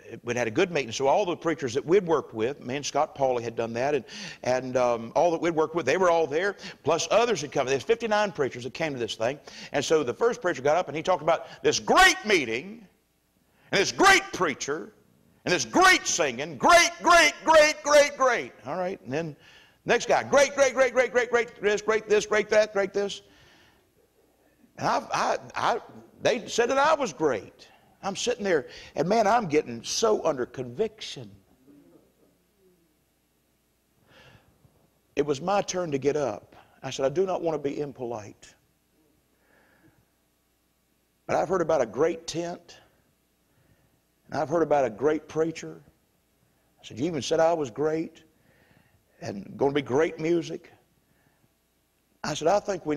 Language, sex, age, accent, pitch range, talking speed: English, male, 60-79, American, 135-215 Hz, 180 wpm